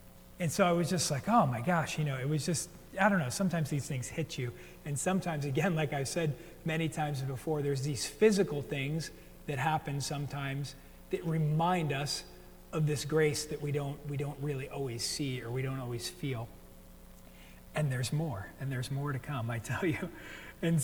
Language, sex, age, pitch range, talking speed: English, male, 40-59, 120-160 Hz, 200 wpm